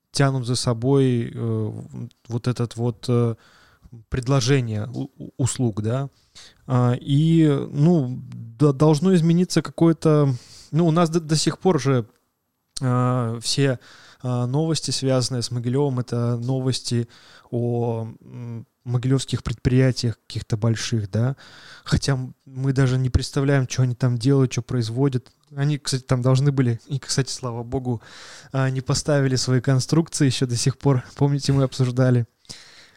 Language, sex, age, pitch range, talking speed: Russian, male, 20-39, 120-145 Hz, 130 wpm